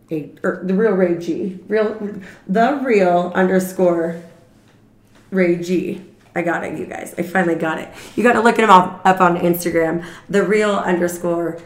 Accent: American